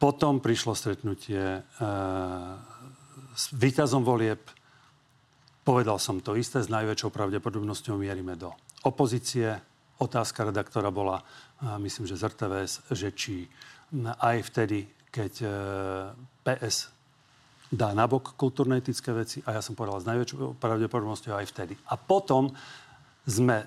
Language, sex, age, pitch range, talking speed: Slovak, male, 40-59, 105-135 Hz, 125 wpm